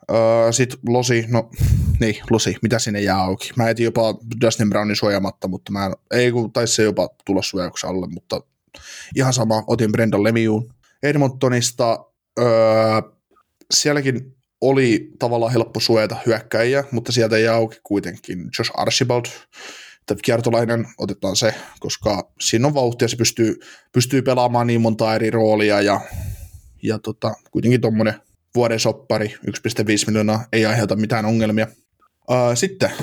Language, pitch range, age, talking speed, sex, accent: Finnish, 110-125 Hz, 20-39, 135 wpm, male, native